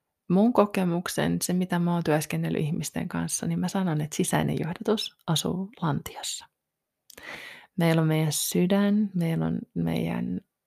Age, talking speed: 20-39, 135 wpm